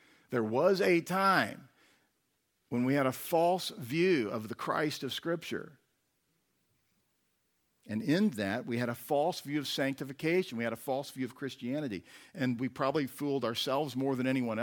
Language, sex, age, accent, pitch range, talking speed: English, male, 50-69, American, 120-165 Hz, 165 wpm